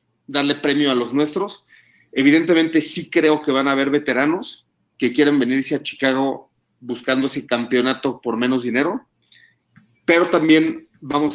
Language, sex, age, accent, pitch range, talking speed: Spanish, male, 40-59, Mexican, 125-165 Hz, 145 wpm